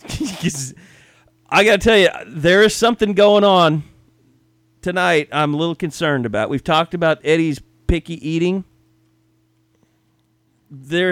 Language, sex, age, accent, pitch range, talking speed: English, male, 40-59, American, 110-170 Hz, 120 wpm